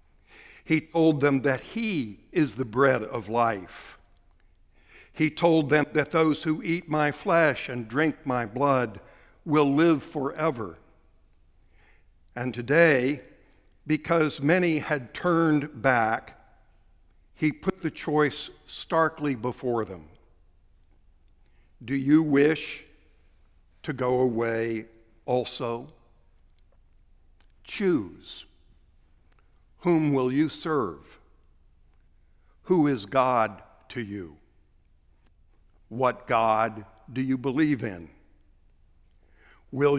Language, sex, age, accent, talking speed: English, male, 60-79, American, 95 wpm